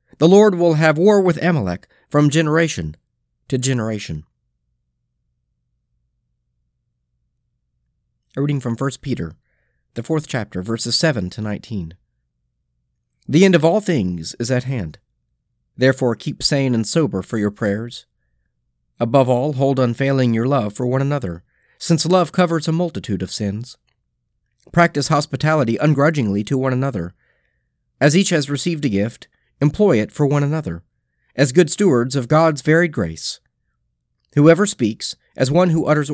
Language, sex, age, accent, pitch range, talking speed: English, male, 40-59, American, 105-165 Hz, 140 wpm